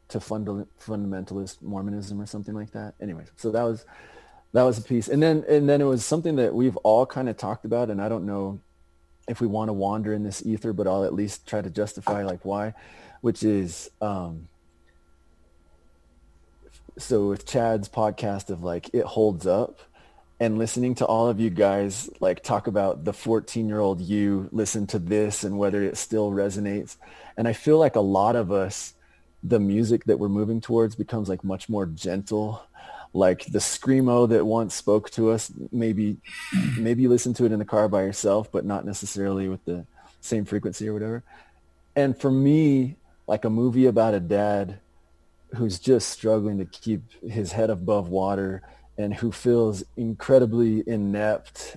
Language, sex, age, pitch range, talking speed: English, male, 30-49, 100-115 Hz, 180 wpm